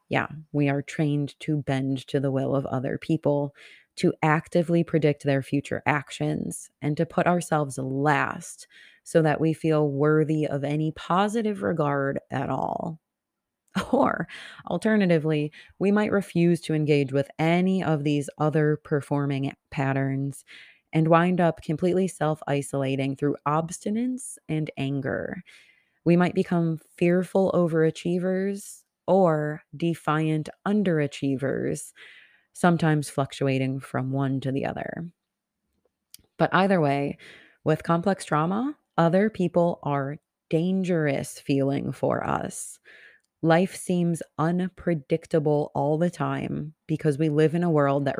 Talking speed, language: 120 wpm, English